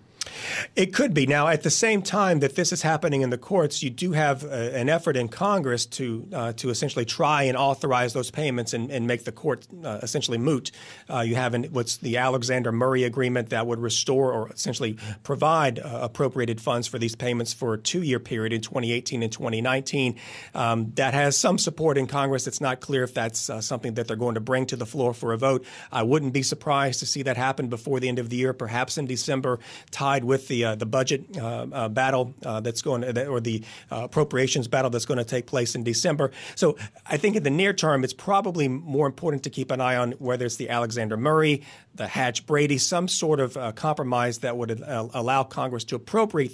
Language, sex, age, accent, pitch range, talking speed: English, male, 40-59, American, 120-140 Hz, 220 wpm